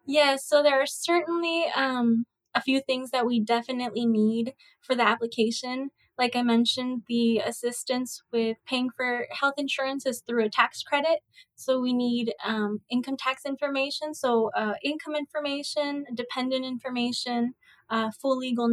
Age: 20-39